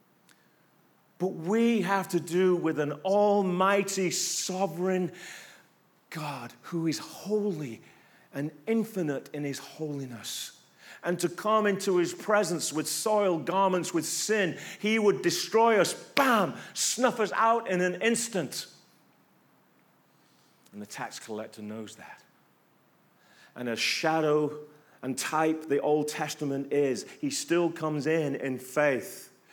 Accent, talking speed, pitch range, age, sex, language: British, 125 wpm, 150-185 Hz, 40-59, male, English